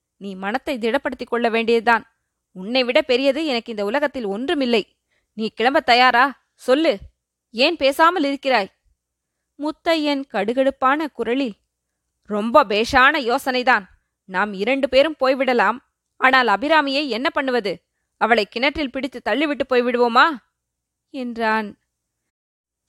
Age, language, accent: 20-39, Tamil, native